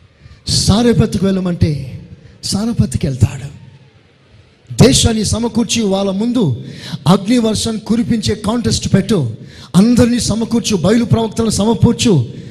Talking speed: 80 wpm